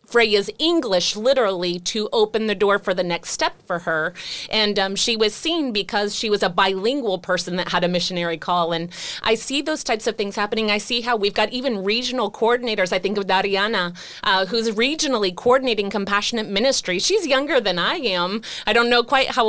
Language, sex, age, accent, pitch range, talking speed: English, female, 30-49, American, 190-230 Hz, 200 wpm